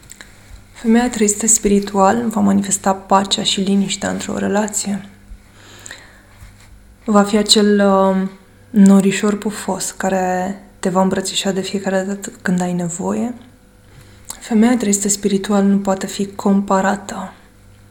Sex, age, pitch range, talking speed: female, 20-39, 180-200 Hz, 110 wpm